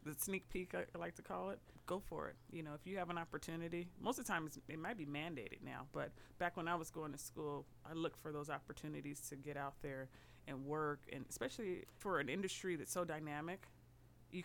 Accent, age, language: American, 30-49, English